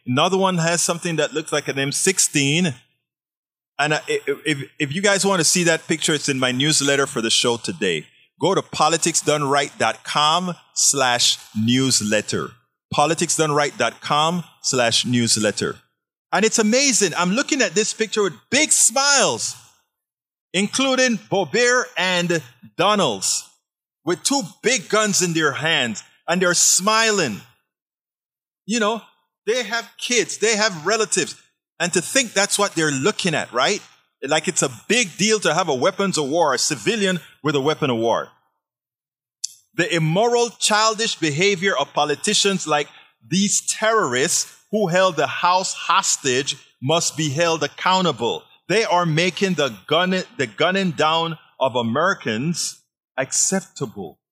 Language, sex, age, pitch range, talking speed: English, male, 30-49, 145-205 Hz, 135 wpm